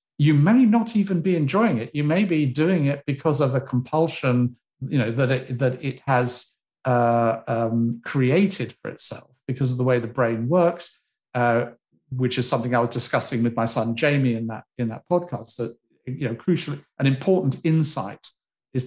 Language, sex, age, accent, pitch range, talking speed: English, male, 50-69, British, 125-155 Hz, 190 wpm